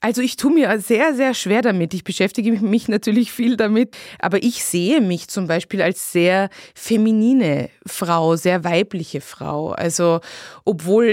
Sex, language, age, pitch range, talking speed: female, German, 20-39, 175-220 Hz, 155 wpm